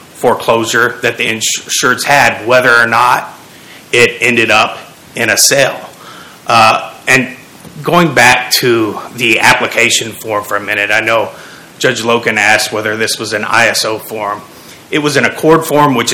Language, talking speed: English, 155 wpm